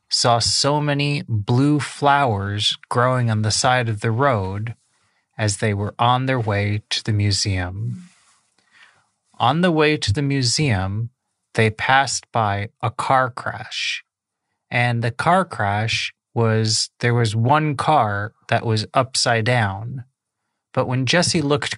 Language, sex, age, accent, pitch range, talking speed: English, male, 30-49, American, 105-135 Hz, 140 wpm